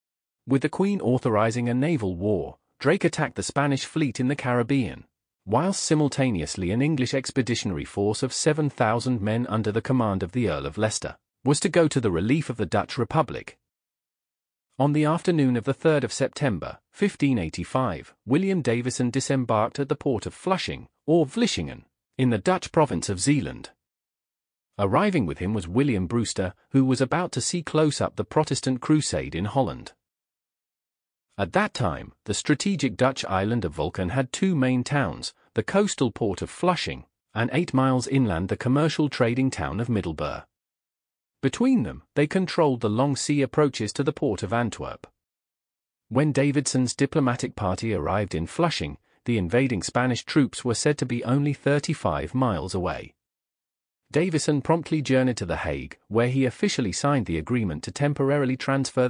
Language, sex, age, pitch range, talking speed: English, male, 40-59, 110-145 Hz, 165 wpm